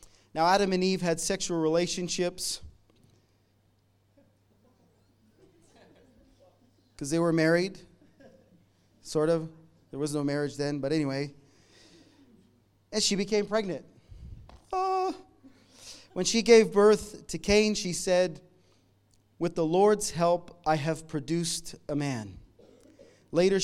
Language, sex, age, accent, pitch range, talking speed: English, male, 30-49, American, 115-180 Hz, 105 wpm